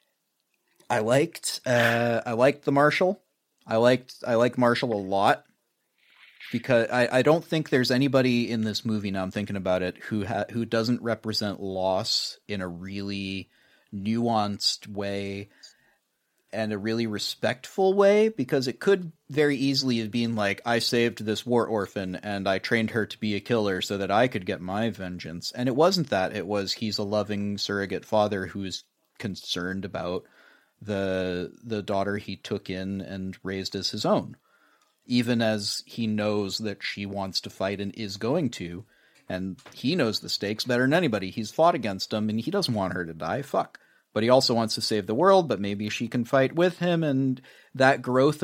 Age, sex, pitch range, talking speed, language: 30-49, male, 100-135 Hz, 185 wpm, English